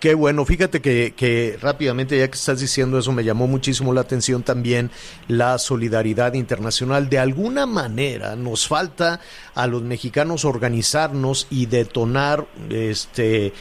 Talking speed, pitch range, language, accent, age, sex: 140 wpm, 115-140 Hz, Spanish, Mexican, 50-69, male